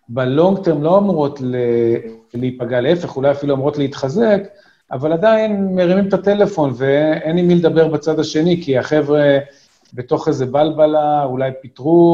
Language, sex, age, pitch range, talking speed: Hebrew, male, 40-59, 135-165 Hz, 140 wpm